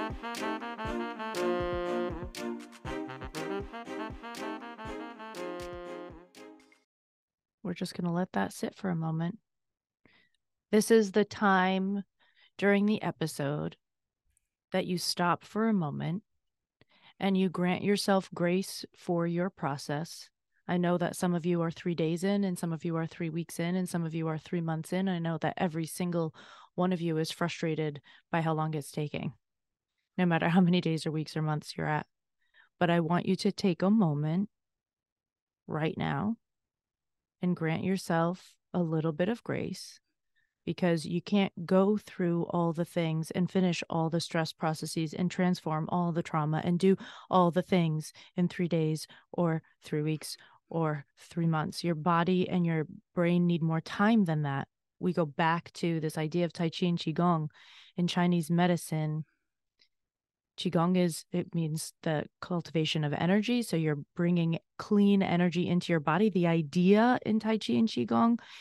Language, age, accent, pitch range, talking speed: English, 30-49, American, 160-185 Hz, 160 wpm